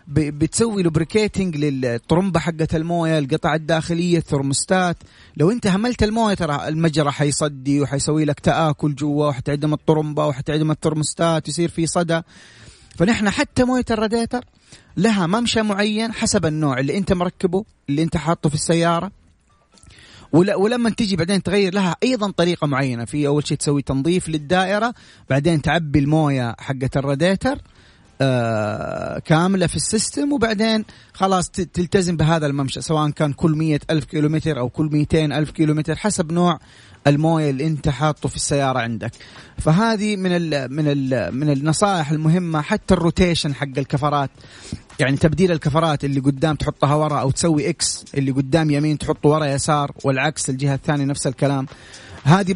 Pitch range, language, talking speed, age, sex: 145-175 Hz, Arabic, 140 wpm, 30-49, male